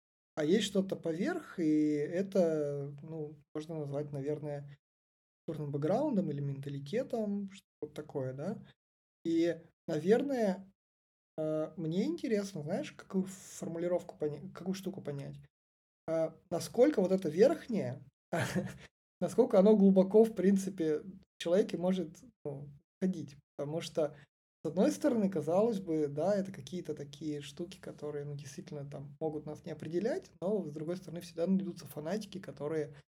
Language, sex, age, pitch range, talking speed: Russian, male, 20-39, 145-185 Hz, 125 wpm